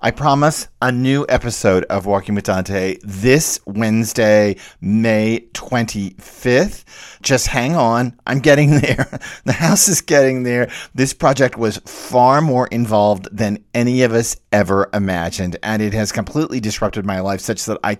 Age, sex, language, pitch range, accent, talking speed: 50-69, male, English, 100-125 Hz, American, 155 wpm